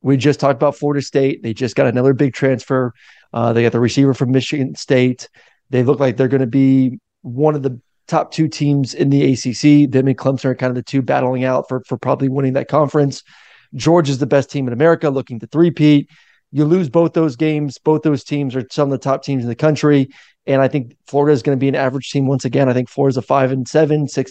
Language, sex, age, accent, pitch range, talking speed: English, male, 30-49, American, 130-145 Hz, 245 wpm